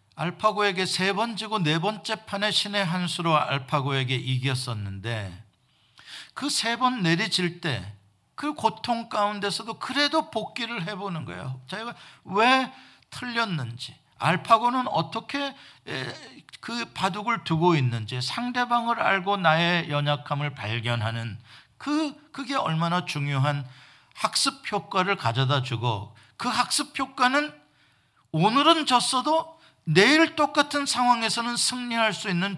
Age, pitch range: 50-69, 135-220 Hz